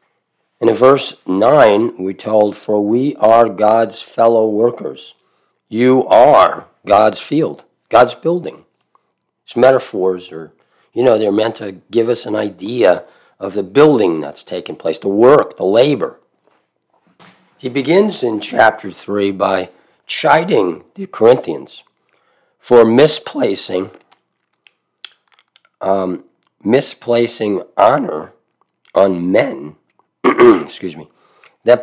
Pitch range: 95-120 Hz